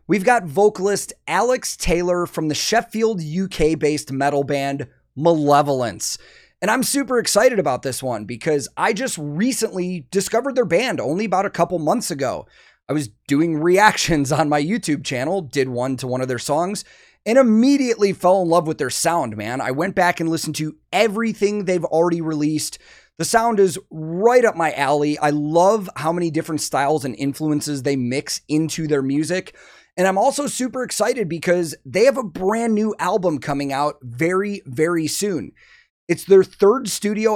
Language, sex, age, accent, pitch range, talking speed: English, male, 30-49, American, 150-200 Hz, 170 wpm